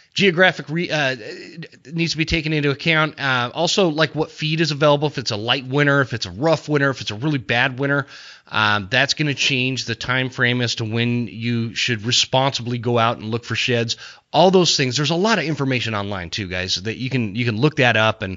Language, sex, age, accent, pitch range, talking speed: English, male, 30-49, American, 115-155 Hz, 235 wpm